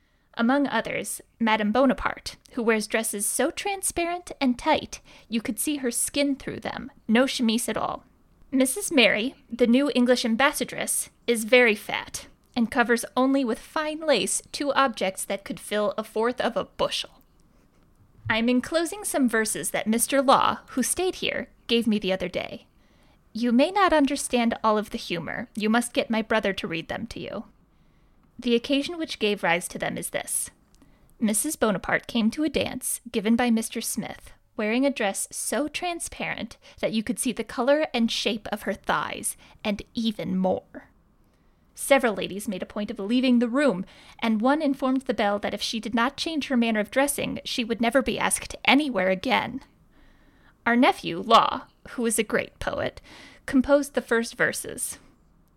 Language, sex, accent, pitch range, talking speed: English, female, American, 220-275 Hz, 175 wpm